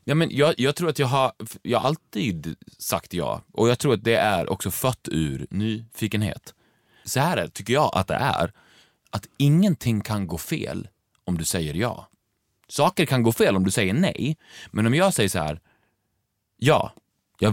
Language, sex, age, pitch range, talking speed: Swedish, male, 30-49, 100-135 Hz, 185 wpm